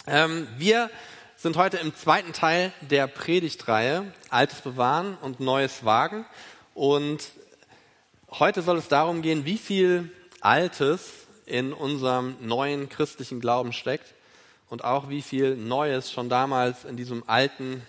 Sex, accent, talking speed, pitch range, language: male, German, 125 wpm, 130-170 Hz, German